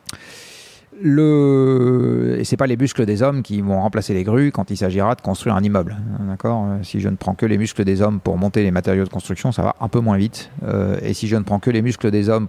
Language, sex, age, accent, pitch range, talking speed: French, male, 40-59, French, 100-130 Hz, 255 wpm